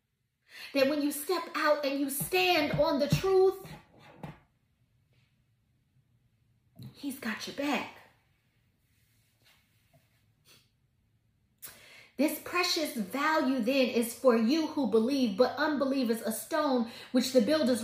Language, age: English, 30-49